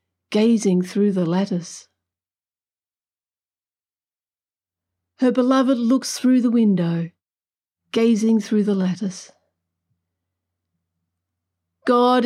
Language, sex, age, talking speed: English, female, 50-69, 75 wpm